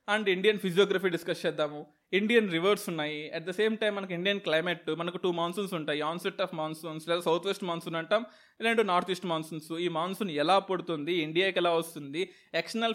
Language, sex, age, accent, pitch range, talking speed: Telugu, male, 20-39, native, 170-220 Hz, 180 wpm